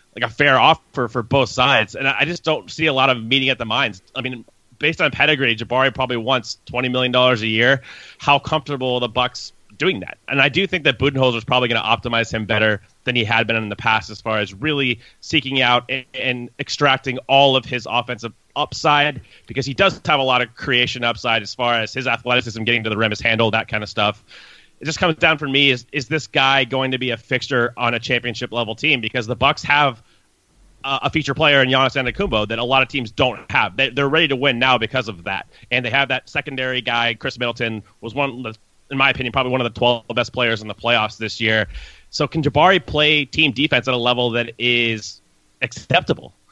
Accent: American